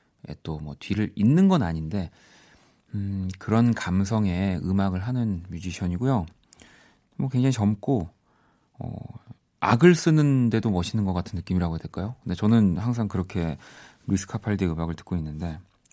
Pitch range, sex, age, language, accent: 95-135 Hz, male, 40-59, Korean, native